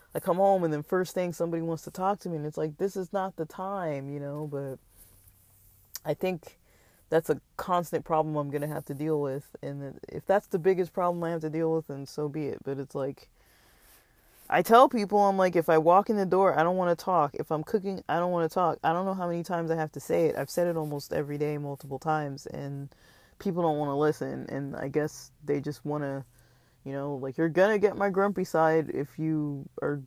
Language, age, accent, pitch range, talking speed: English, 20-39, American, 140-175 Hz, 245 wpm